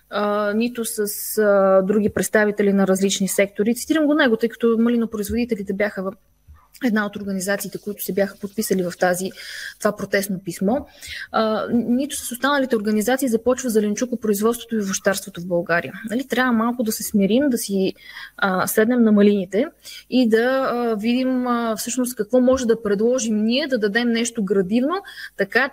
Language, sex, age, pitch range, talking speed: Bulgarian, female, 20-39, 210-260 Hz, 160 wpm